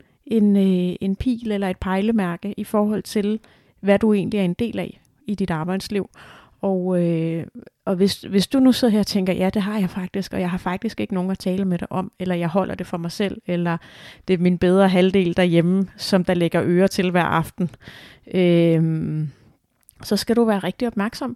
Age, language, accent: 30-49, Danish, native